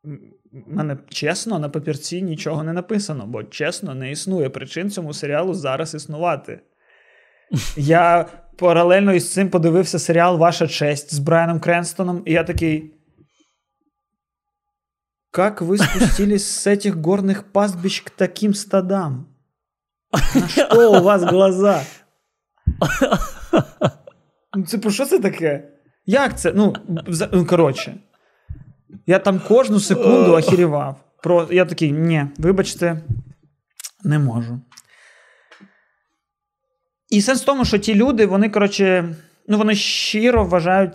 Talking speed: 115 wpm